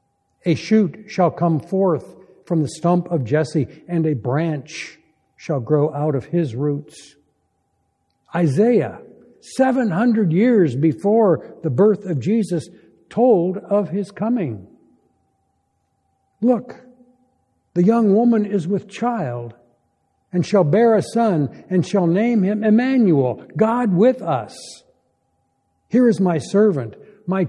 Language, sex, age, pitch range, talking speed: English, male, 60-79, 150-200 Hz, 120 wpm